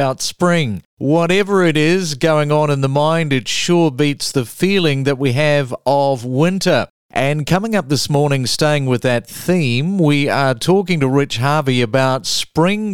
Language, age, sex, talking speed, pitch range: English, 40-59, male, 170 wpm, 130-165 Hz